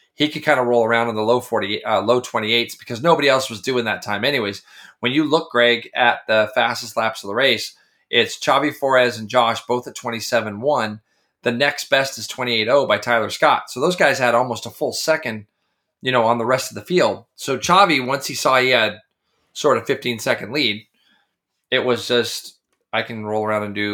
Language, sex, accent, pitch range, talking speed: English, male, American, 110-130 Hz, 215 wpm